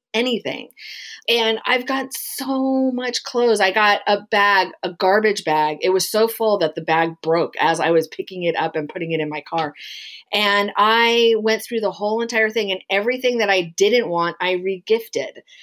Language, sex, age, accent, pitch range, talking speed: English, female, 40-59, American, 175-230 Hz, 190 wpm